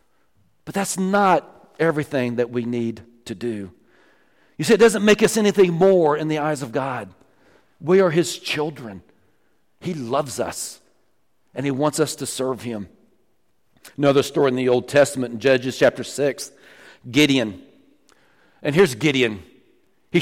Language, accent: English, American